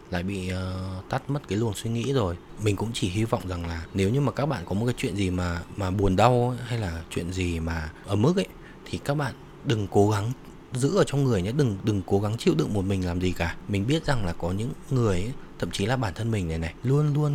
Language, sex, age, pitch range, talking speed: Vietnamese, male, 20-39, 90-120 Hz, 275 wpm